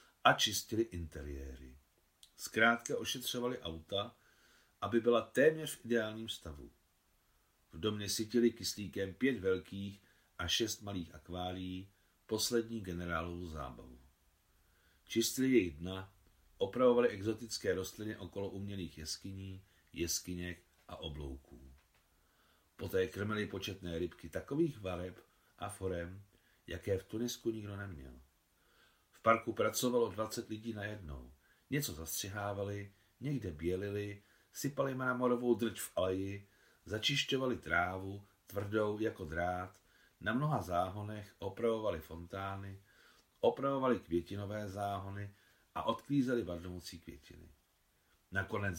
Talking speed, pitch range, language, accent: 100 wpm, 85-110 Hz, Czech, native